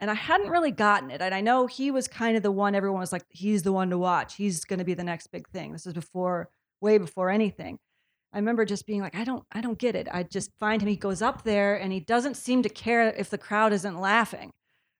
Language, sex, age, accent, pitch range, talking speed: English, female, 30-49, American, 190-230 Hz, 270 wpm